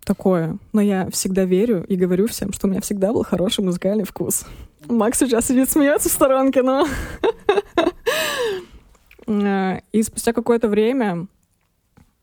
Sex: female